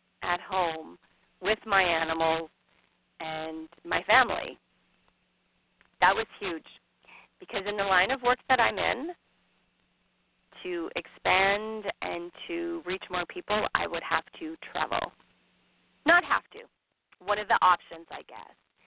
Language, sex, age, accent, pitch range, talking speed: English, female, 40-59, American, 170-220 Hz, 130 wpm